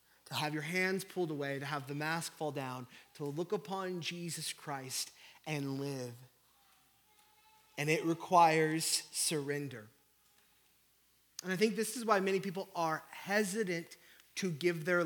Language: English